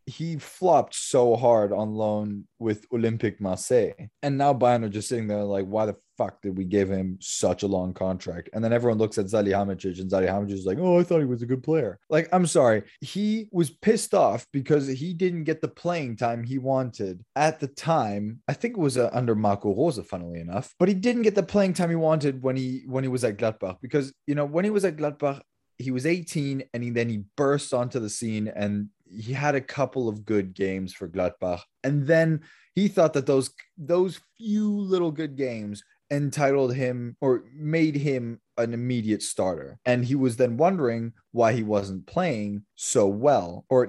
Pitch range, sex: 105-145 Hz, male